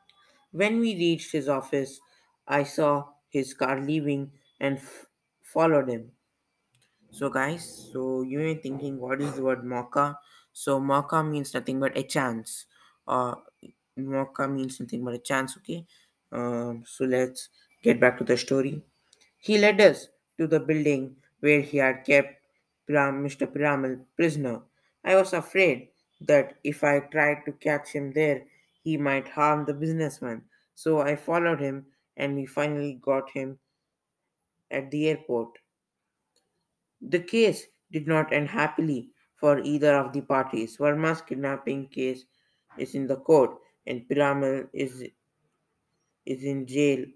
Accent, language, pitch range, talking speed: Indian, English, 130-150 Hz, 145 wpm